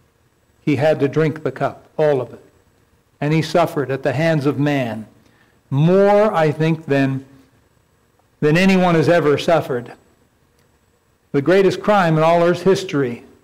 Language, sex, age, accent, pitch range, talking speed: English, male, 60-79, American, 135-160 Hz, 145 wpm